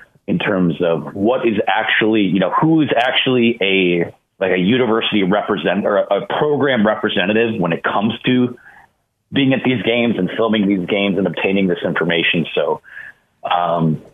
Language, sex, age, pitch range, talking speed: English, male, 30-49, 100-135 Hz, 165 wpm